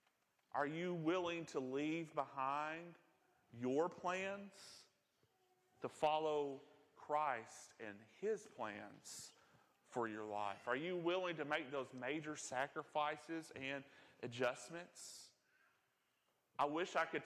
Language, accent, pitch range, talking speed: English, American, 125-155 Hz, 110 wpm